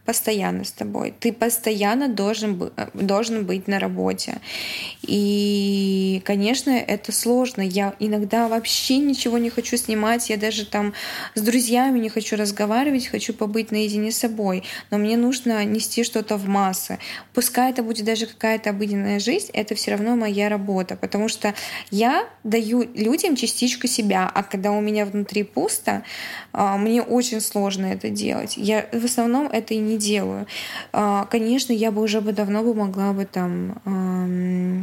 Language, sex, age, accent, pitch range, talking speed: Russian, female, 20-39, native, 200-230 Hz, 155 wpm